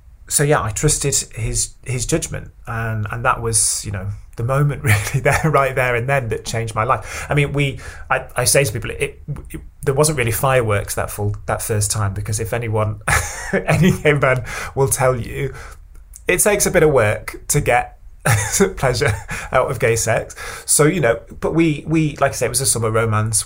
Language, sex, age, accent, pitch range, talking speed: English, male, 20-39, British, 105-130 Hz, 205 wpm